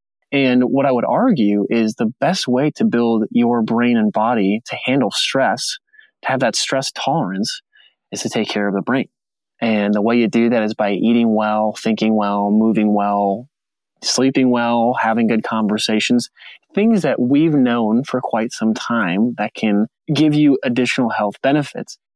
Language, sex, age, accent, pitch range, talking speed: English, male, 20-39, American, 110-140 Hz, 175 wpm